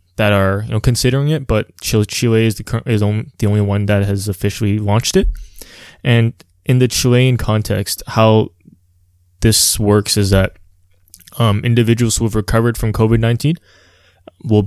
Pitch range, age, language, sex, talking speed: 100-115 Hz, 20-39, English, male, 150 wpm